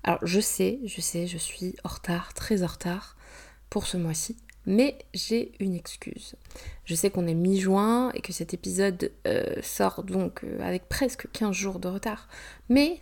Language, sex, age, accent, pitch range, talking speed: French, female, 20-39, French, 175-225 Hz, 175 wpm